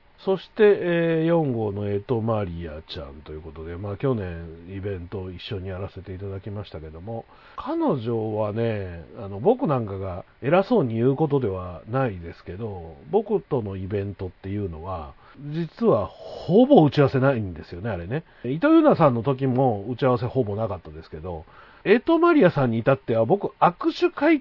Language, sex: Japanese, male